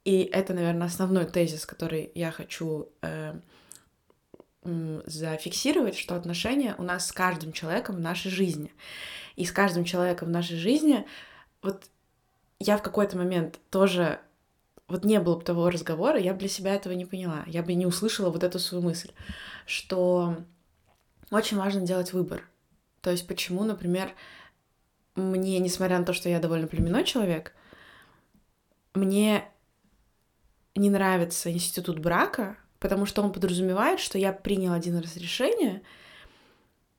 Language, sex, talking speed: Russian, female, 140 wpm